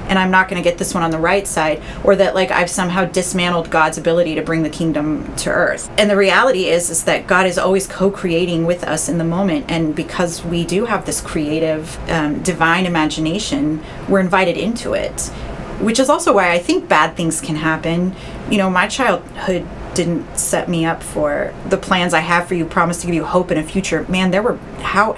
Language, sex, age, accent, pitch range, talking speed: English, female, 30-49, American, 165-190 Hz, 220 wpm